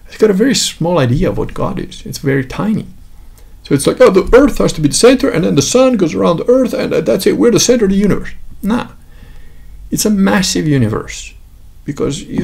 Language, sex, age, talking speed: English, male, 50-69, 230 wpm